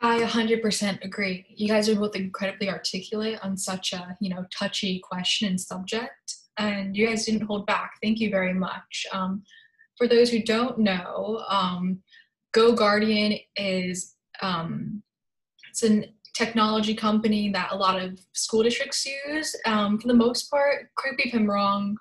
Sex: female